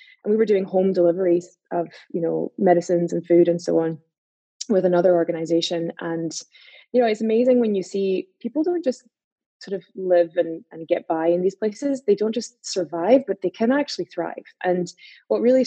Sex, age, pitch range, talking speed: female, 20-39, 175-220 Hz, 195 wpm